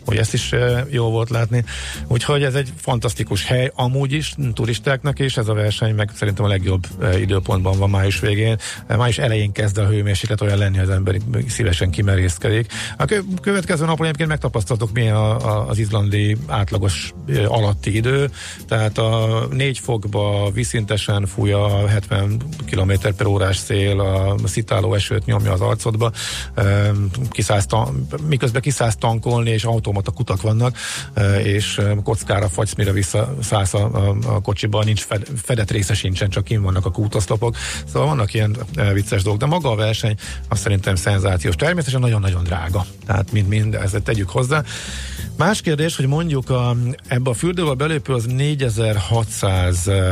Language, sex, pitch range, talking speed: Hungarian, male, 100-120 Hz, 155 wpm